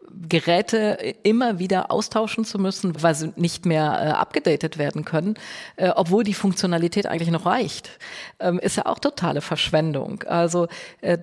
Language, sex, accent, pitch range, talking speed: German, female, German, 170-200 Hz, 155 wpm